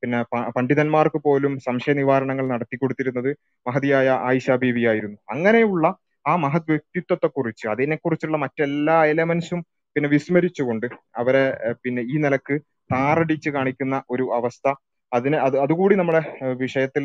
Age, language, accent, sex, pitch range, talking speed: 20-39, Malayalam, native, male, 130-155 Hz, 120 wpm